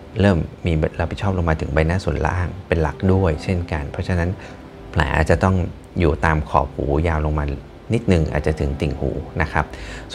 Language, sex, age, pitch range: Thai, male, 30-49, 75-90 Hz